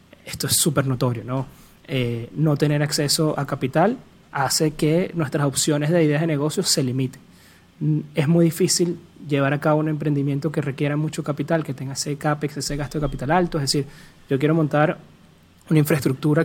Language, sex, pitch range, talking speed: Spanish, male, 140-160 Hz, 180 wpm